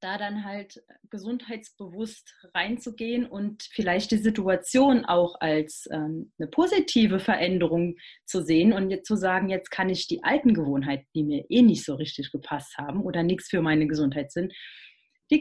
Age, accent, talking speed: 30-49, German, 155 wpm